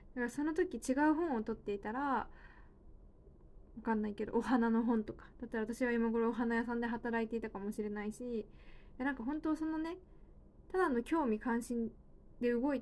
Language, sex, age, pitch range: Japanese, female, 20-39, 215-260 Hz